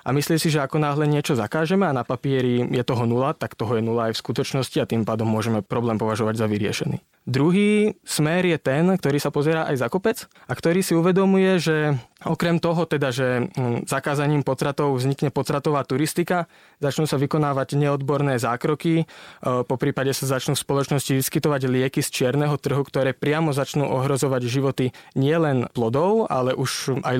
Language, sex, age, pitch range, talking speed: Slovak, male, 20-39, 125-155 Hz, 175 wpm